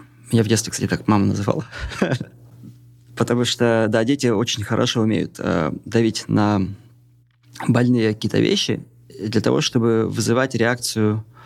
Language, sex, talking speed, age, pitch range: Russian, male, 130 wpm, 30-49, 110-125 Hz